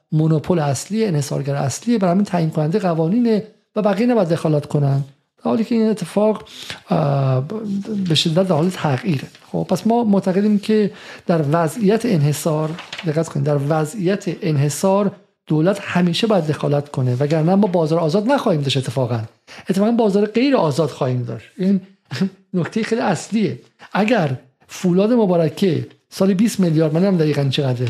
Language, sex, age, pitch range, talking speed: Persian, male, 50-69, 165-220 Hz, 140 wpm